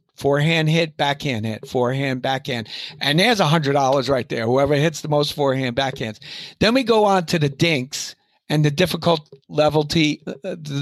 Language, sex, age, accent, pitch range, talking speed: English, male, 60-79, American, 135-170 Hz, 145 wpm